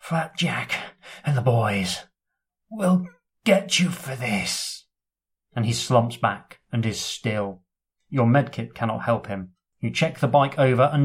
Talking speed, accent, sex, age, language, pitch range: 150 wpm, British, male, 30-49, English, 115-145 Hz